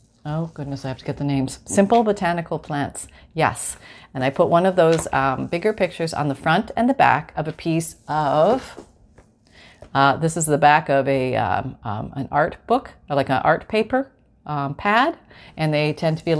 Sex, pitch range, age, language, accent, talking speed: female, 140-185 Hz, 40-59, English, American, 205 wpm